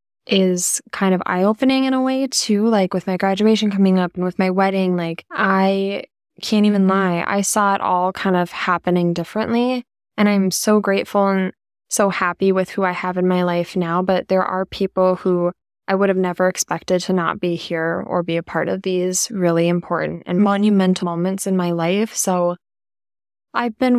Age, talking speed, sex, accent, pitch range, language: 10-29, 195 wpm, female, American, 180-205 Hz, English